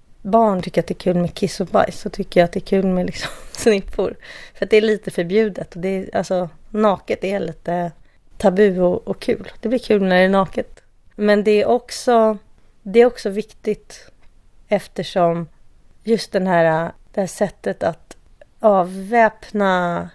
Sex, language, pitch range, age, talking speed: female, Swedish, 180-210 Hz, 30-49, 180 wpm